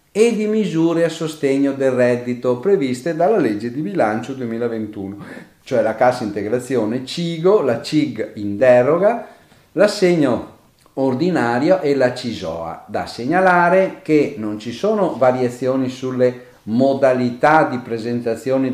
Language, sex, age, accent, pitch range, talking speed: Italian, male, 40-59, native, 110-150 Hz, 120 wpm